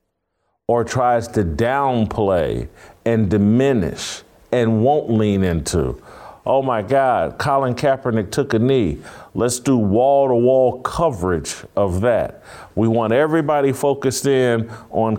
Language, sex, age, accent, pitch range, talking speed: English, male, 50-69, American, 110-140 Hz, 125 wpm